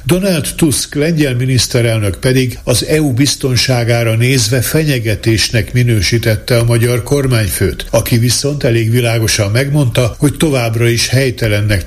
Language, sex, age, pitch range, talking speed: Hungarian, male, 60-79, 110-130 Hz, 115 wpm